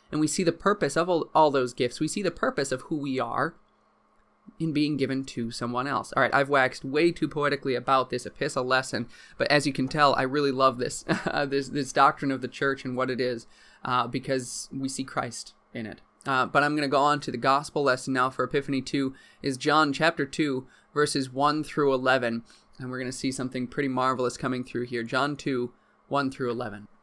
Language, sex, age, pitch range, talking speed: English, male, 20-39, 130-150 Hz, 220 wpm